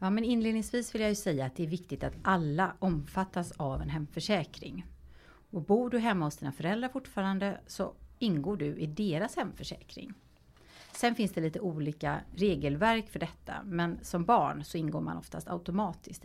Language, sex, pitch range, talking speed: Swedish, female, 150-200 Hz, 175 wpm